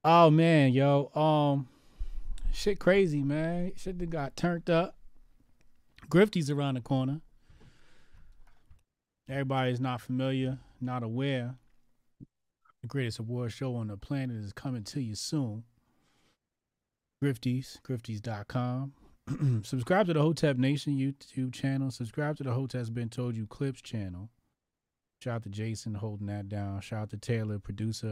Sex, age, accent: male, 30-49, American